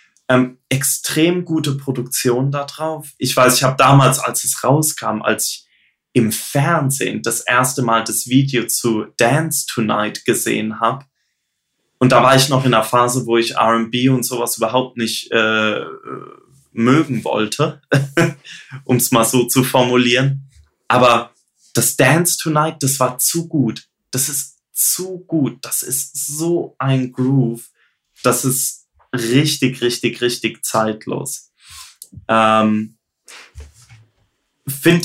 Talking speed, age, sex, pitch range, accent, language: 130 wpm, 20-39, male, 115-145 Hz, German, German